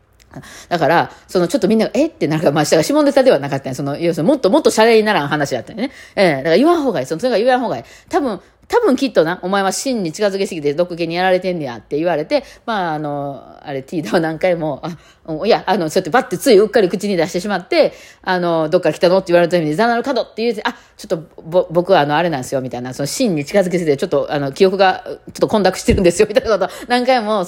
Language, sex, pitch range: Japanese, female, 145-230 Hz